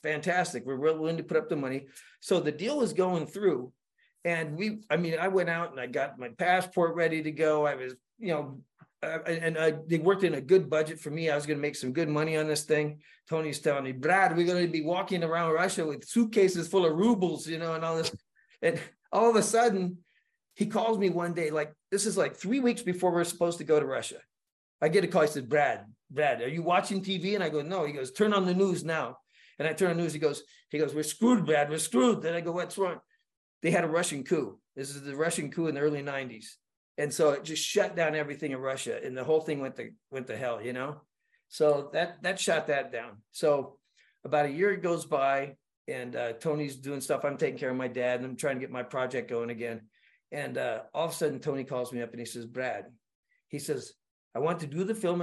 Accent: American